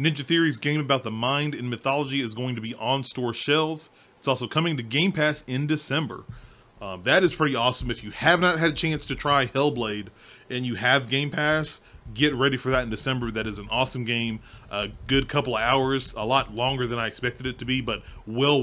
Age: 30-49